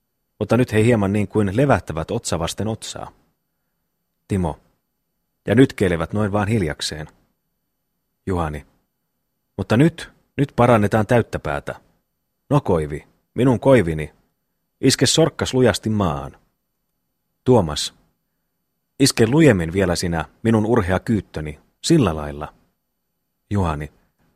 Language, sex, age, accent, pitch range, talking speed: Finnish, male, 30-49, native, 85-125 Hz, 105 wpm